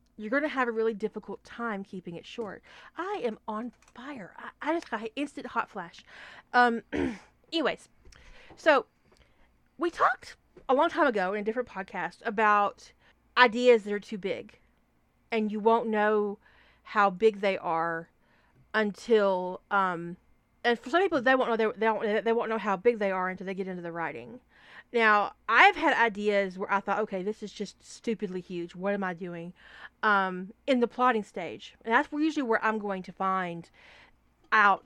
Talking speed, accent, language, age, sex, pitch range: 175 wpm, American, English, 30-49, female, 195-240 Hz